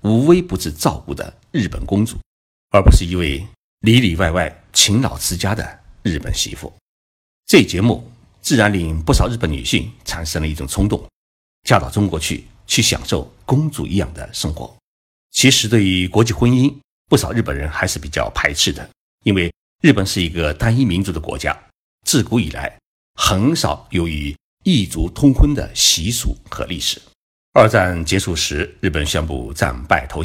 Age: 60-79